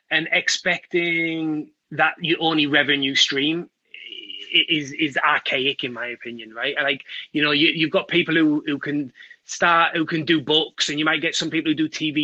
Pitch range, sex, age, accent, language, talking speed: 145-170 Hz, male, 20-39, British, English, 185 wpm